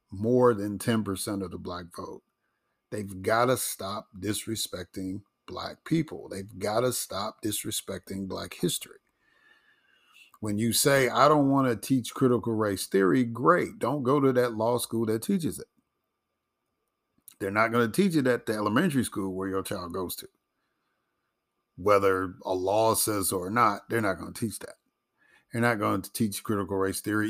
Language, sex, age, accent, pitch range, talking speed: English, male, 50-69, American, 95-120 Hz, 170 wpm